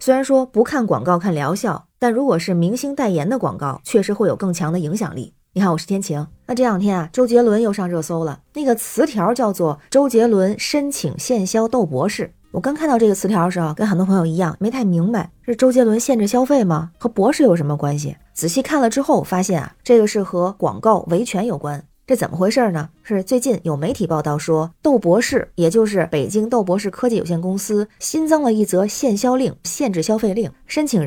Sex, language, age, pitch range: female, Chinese, 20-39, 175-245 Hz